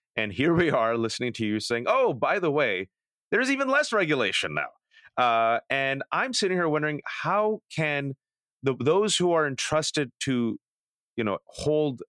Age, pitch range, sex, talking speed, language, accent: 30-49, 125-180 Hz, male, 170 wpm, English, American